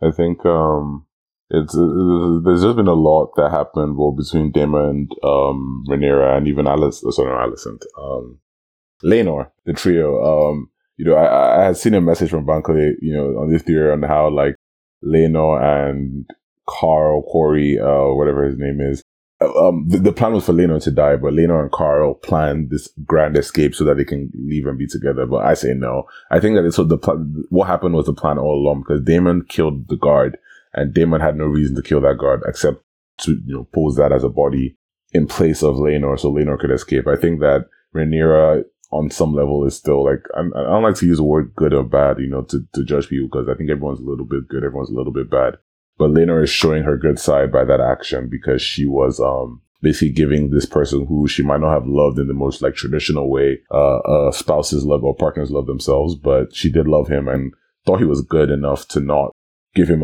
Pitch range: 70-80 Hz